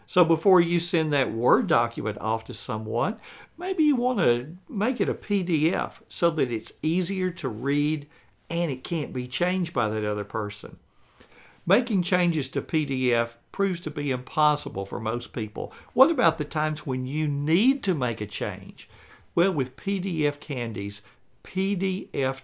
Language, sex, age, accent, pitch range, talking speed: English, male, 60-79, American, 115-170 Hz, 160 wpm